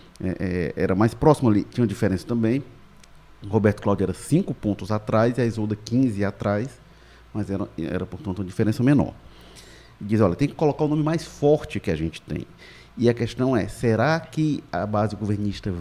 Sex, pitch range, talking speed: male, 95-120 Hz, 195 wpm